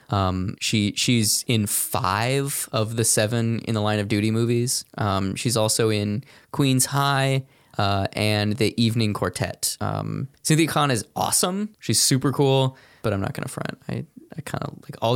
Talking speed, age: 180 wpm, 20-39